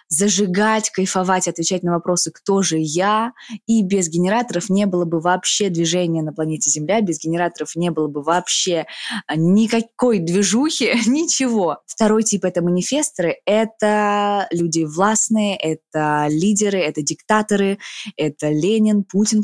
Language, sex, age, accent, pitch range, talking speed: Russian, female, 20-39, native, 160-210 Hz, 135 wpm